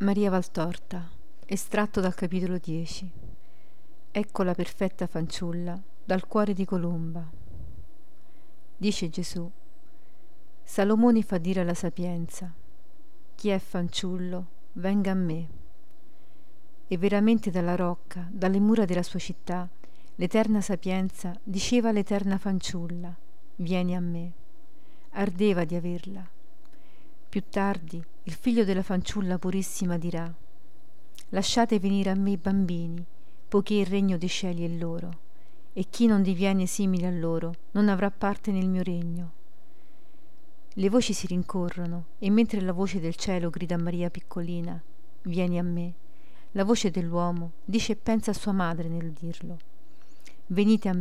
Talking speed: 130 wpm